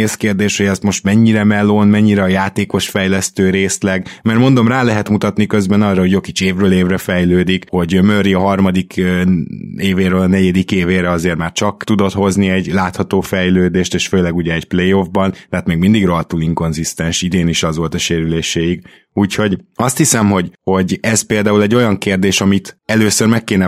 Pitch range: 90-105 Hz